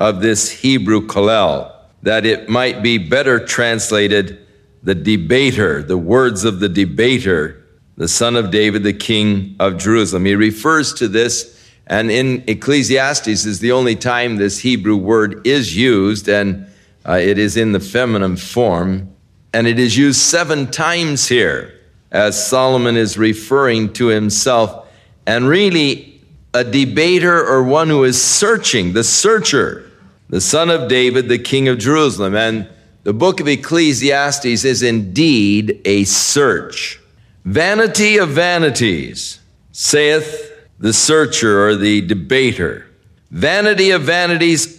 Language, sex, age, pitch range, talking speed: English, male, 50-69, 105-150 Hz, 135 wpm